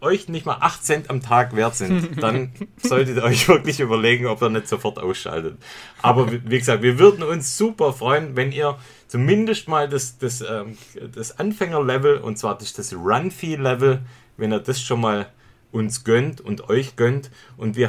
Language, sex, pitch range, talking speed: German, male, 115-145 Hz, 175 wpm